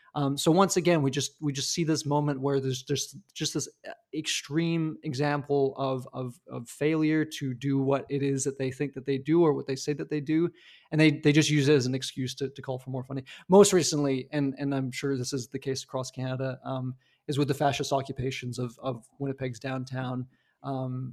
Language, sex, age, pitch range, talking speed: English, male, 20-39, 135-155 Hz, 220 wpm